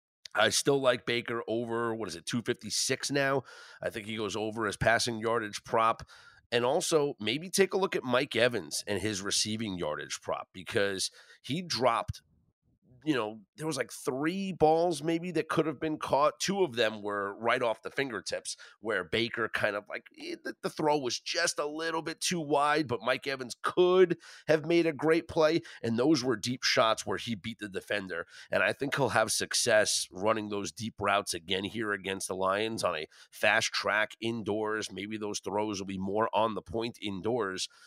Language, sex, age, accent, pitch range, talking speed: English, male, 30-49, American, 105-150 Hz, 190 wpm